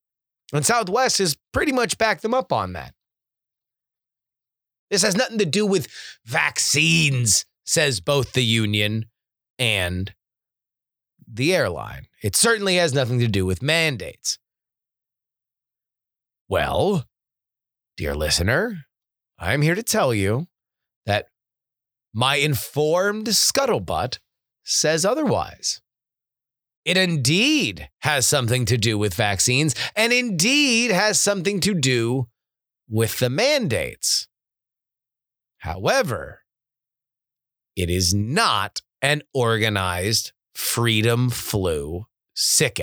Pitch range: 115-170 Hz